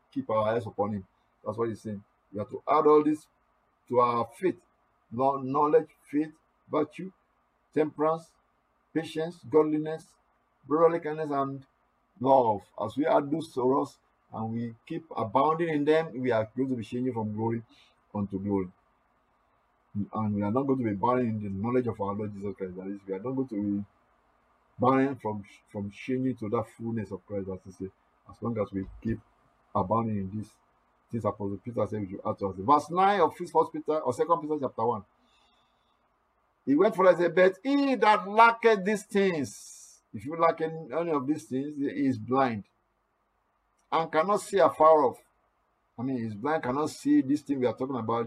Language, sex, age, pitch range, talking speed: English, male, 50-69, 105-155 Hz, 185 wpm